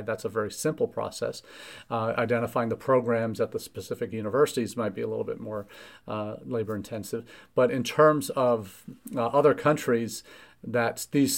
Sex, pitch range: male, 115-135 Hz